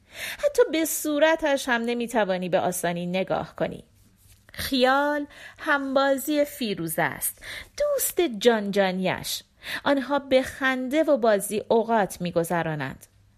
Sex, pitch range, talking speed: female, 185-280 Hz, 110 wpm